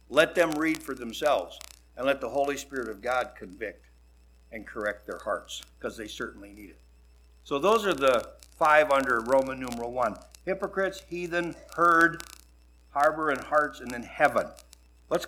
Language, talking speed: English, 160 wpm